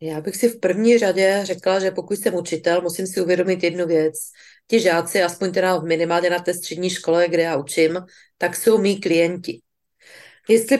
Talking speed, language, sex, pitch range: 185 wpm, Czech, female, 175-225 Hz